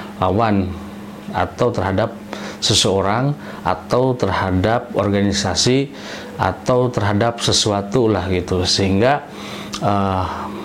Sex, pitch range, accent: male, 100-115 Hz, native